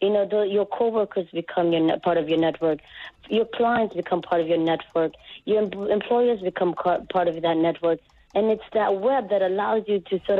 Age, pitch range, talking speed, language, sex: 30-49, 180-230 Hz, 215 wpm, English, female